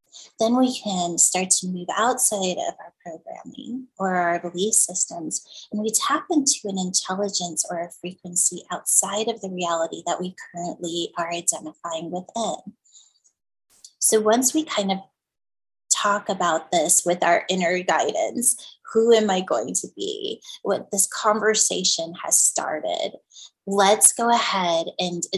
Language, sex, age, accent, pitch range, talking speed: English, female, 20-39, American, 180-230 Hz, 140 wpm